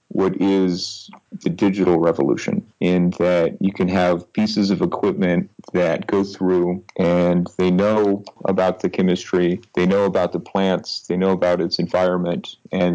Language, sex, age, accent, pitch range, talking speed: English, male, 40-59, American, 90-100 Hz, 155 wpm